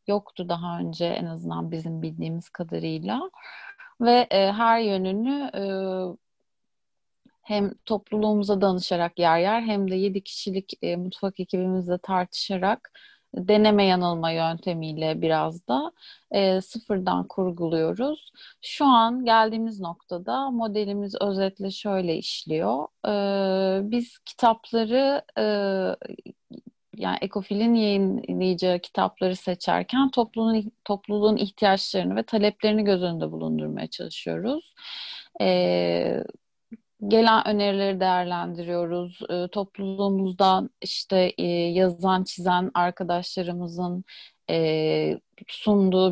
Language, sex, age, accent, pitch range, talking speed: Turkish, female, 30-49, native, 175-215 Hz, 95 wpm